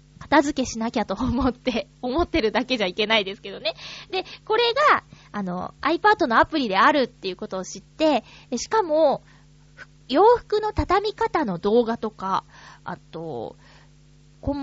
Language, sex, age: Japanese, female, 20-39